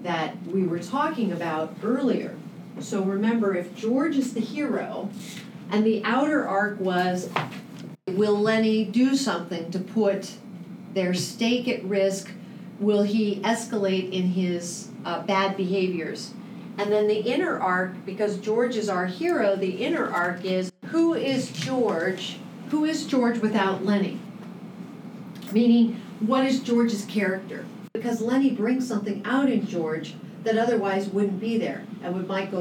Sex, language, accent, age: female, English, American, 40-59